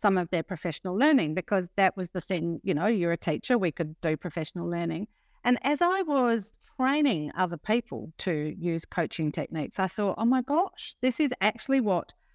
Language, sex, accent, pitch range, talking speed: English, female, Australian, 170-225 Hz, 195 wpm